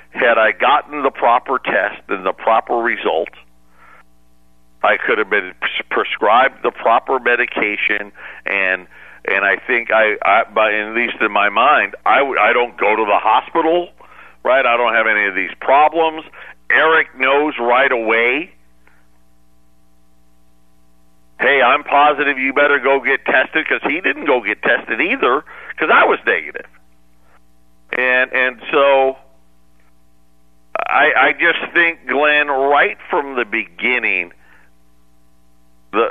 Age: 50-69